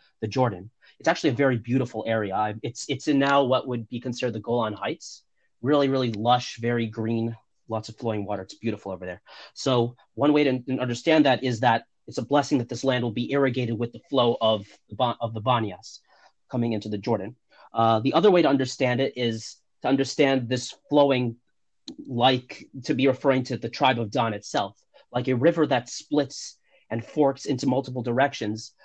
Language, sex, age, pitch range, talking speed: English, male, 30-49, 115-135 Hz, 190 wpm